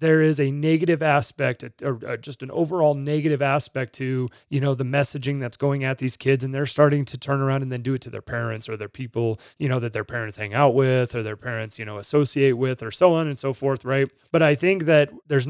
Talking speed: 250 wpm